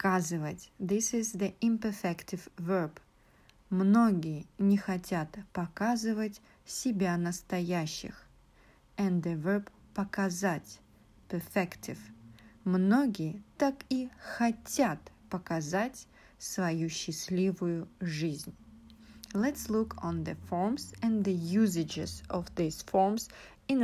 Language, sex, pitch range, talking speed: English, female, 170-220 Hz, 90 wpm